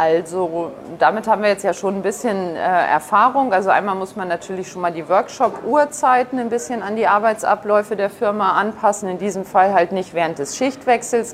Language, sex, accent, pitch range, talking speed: German, female, German, 185-220 Hz, 190 wpm